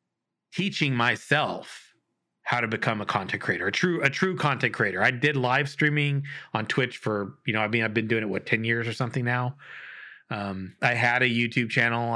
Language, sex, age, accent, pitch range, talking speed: English, male, 30-49, American, 105-125 Hz, 200 wpm